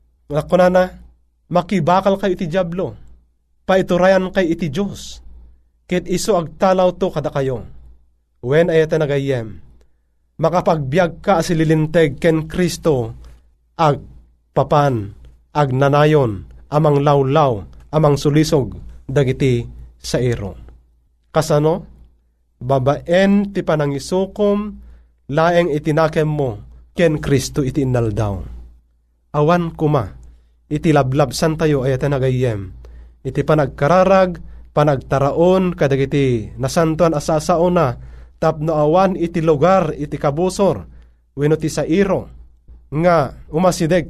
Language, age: Filipino, 30-49